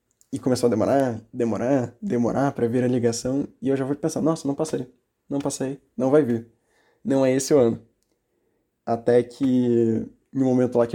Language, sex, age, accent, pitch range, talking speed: Portuguese, male, 20-39, Brazilian, 120-145 Hz, 185 wpm